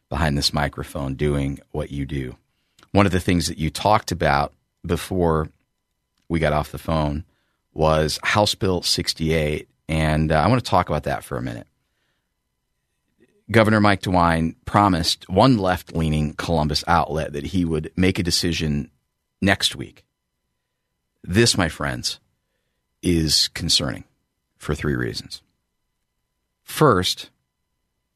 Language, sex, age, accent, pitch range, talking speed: English, male, 40-59, American, 75-95 Hz, 130 wpm